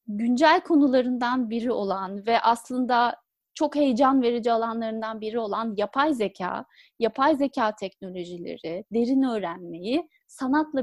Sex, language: female, Turkish